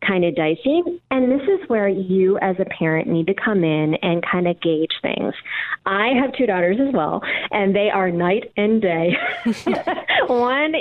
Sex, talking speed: female, 185 wpm